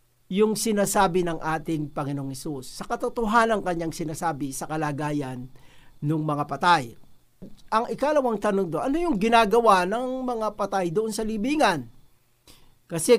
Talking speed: 130 wpm